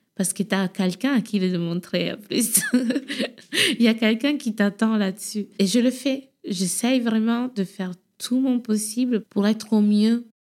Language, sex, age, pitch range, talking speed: French, female, 20-39, 175-225 Hz, 190 wpm